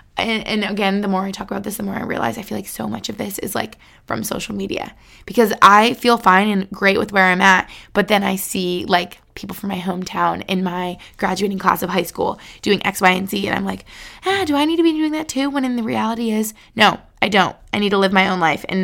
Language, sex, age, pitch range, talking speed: English, female, 20-39, 195-270 Hz, 270 wpm